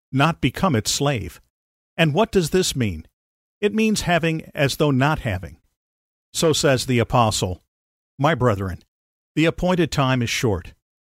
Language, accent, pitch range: English, American, 115-155 Hz